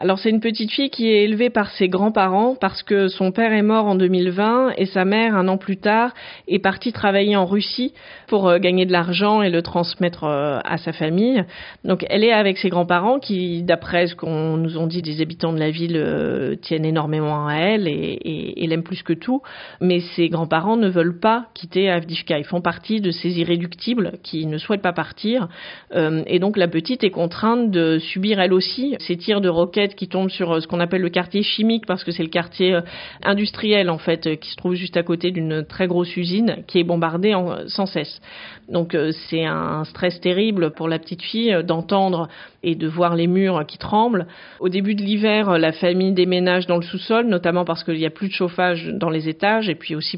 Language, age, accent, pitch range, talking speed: French, 40-59, French, 165-205 Hz, 215 wpm